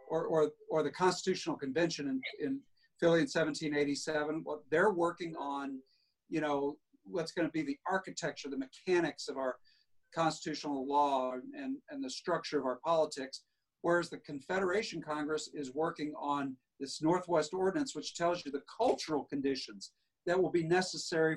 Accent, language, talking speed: American, English, 160 wpm